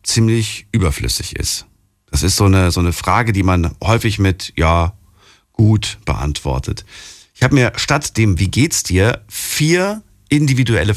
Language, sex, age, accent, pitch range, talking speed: German, male, 50-69, German, 90-115 Hz, 150 wpm